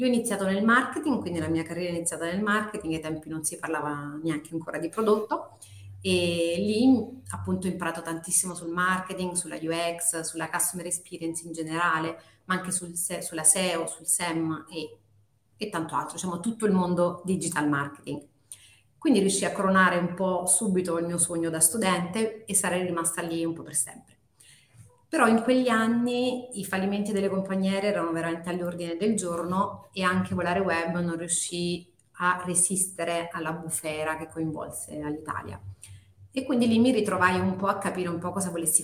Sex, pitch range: female, 160-190 Hz